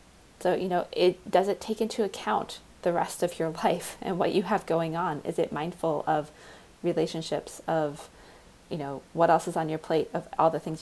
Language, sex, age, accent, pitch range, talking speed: English, female, 20-39, American, 160-190 Hz, 210 wpm